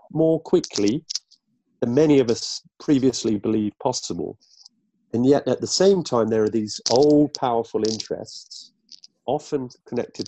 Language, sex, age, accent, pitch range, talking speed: English, male, 40-59, British, 105-135 Hz, 135 wpm